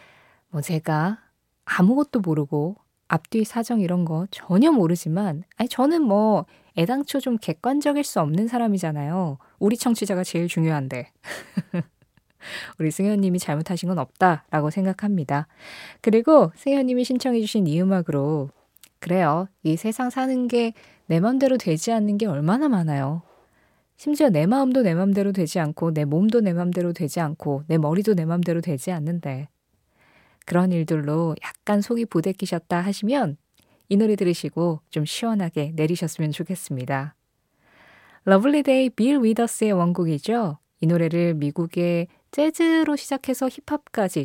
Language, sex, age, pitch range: Korean, female, 20-39, 160-225 Hz